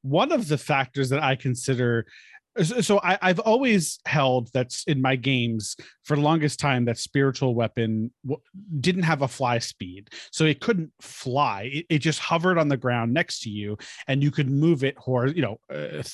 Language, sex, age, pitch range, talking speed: English, male, 30-49, 125-165 Hz, 195 wpm